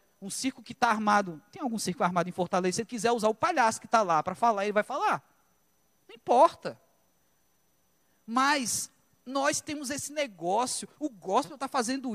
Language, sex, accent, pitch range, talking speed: Portuguese, male, Brazilian, 185-245 Hz, 180 wpm